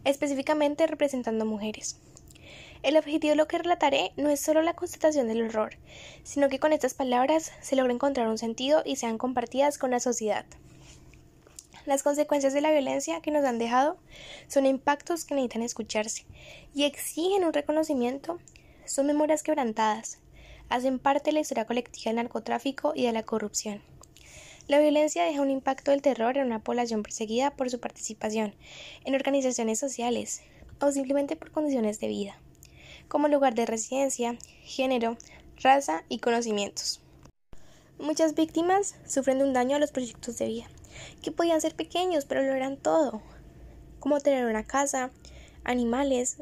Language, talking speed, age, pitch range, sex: Spanish, 155 wpm, 10-29, 235-300 Hz, female